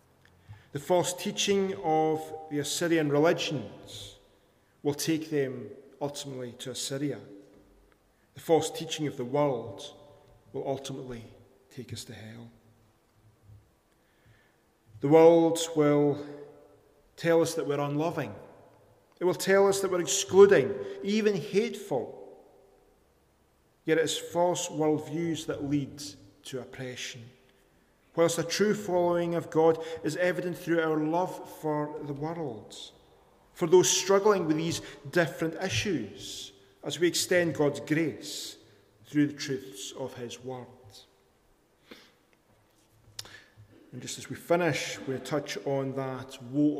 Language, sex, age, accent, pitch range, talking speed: English, male, 40-59, British, 125-170 Hz, 120 wpm